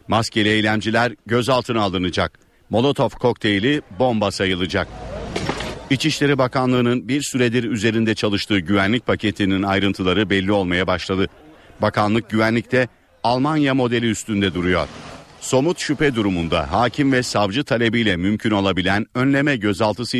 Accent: native